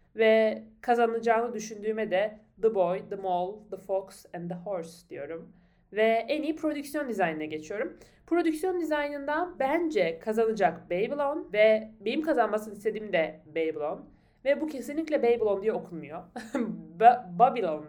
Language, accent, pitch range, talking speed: Turkish, native, 185-275 Hz, 130 wpm